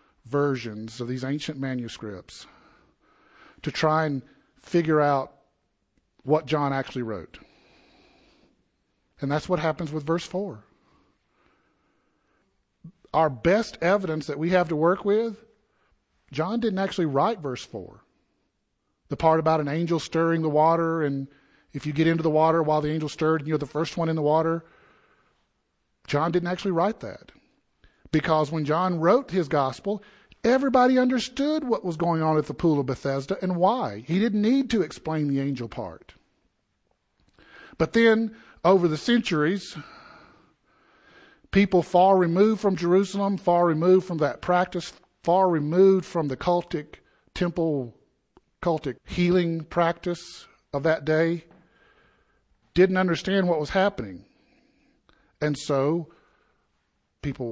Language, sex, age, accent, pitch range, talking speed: English, male, 40-59, American, 150-185 Hz, 135 wpm